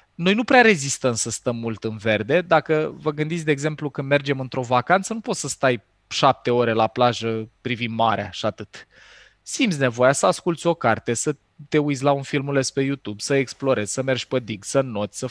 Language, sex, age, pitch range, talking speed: Romanian, male, 20-39, 120-160 Hz, 210 wpm